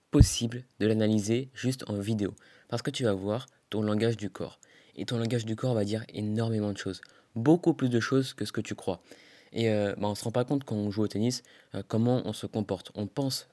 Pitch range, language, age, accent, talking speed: 100-115 Hz, French, 20-39, French, 245 wpm